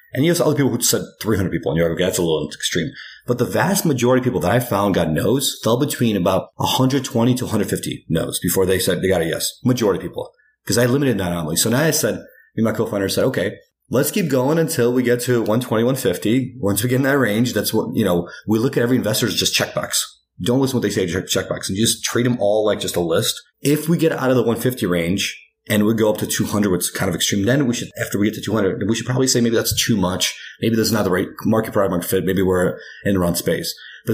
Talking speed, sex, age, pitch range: 270 wpm, male, 30-49, 100-130 Hz